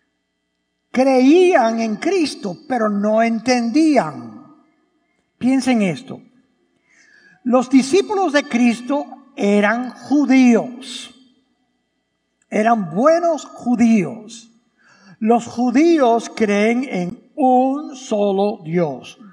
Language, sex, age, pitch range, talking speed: English, male, 60-79, 225-310 Hz, 75 wpm